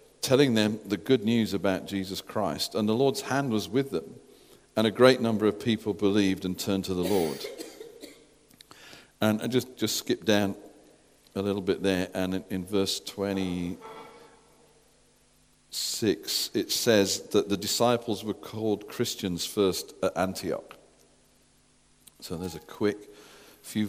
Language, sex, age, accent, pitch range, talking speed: English, male, 50-69, British, 105-130 Hz, 145 wpm